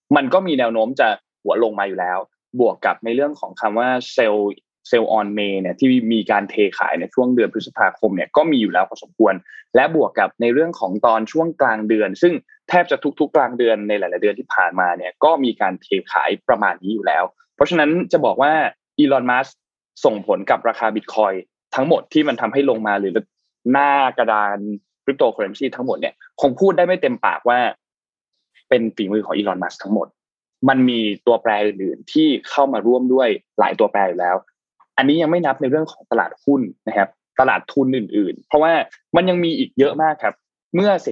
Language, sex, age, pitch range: Thai, male, 20-39, 110-160 Hz